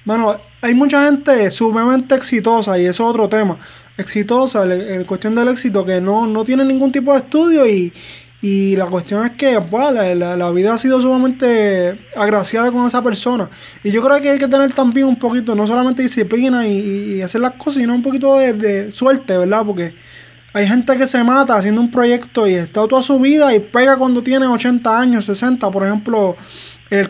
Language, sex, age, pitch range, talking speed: English, male, 20-39, 200-255 Hz, 200 wpm